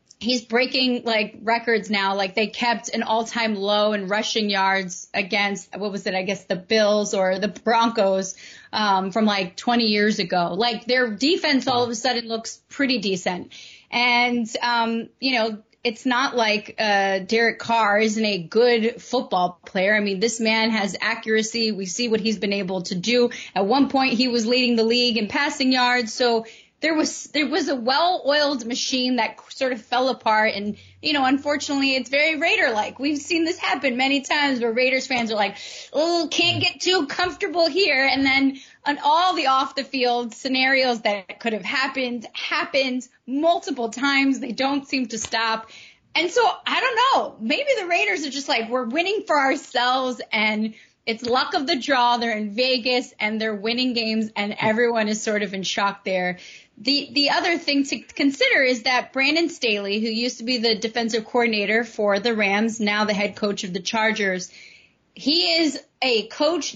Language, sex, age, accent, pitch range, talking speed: English, female, 30-49, American, 215-270 Hz, 185 wpm